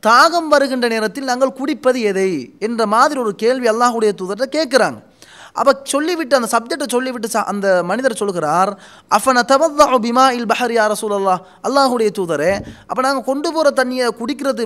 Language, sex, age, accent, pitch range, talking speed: Tamil, male, 20-39, native, 215-285 Hz, 140 wpm